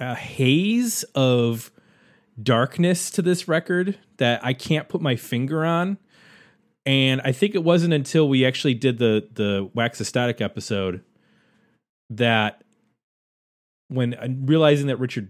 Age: 30-49